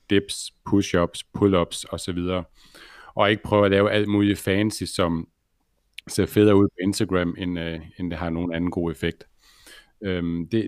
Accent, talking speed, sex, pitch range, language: native, 165 wpm, male, 90-105 Hz, Danish